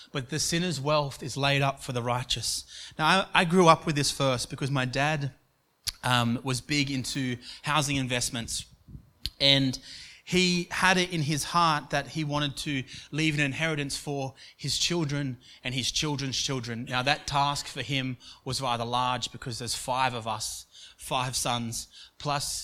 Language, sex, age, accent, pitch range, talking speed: English, male, 30-49, Australian, 120-145 Hz, 170 wpm